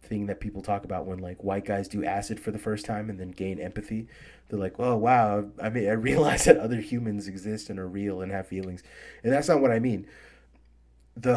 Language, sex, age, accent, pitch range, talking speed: English, male, 30-49, American, 95-115 Hz, 230 wpm